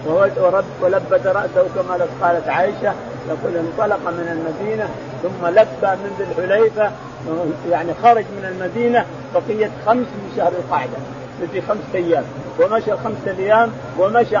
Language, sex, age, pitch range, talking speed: Arabic, male, 50-69, 185-235 Hz, 120 wpm